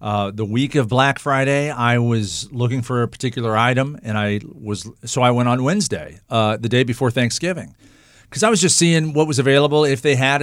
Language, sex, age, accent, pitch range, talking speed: English, male, 40-59, American, 110-145 Hz, 215 wpm